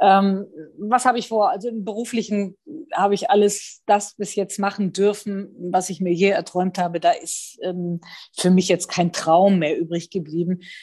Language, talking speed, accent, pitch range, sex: German, 170 wpm, German, 175-205 Hz, female